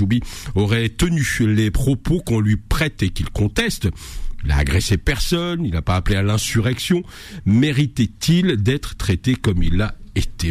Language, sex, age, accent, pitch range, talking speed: French, male, 50-69, French, 105-145 Hz, 160 wpm